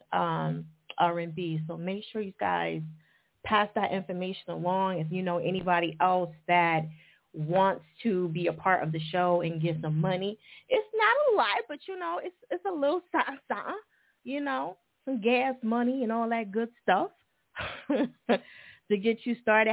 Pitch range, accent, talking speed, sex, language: 165-230 Hz, American, 165 wpm, female, English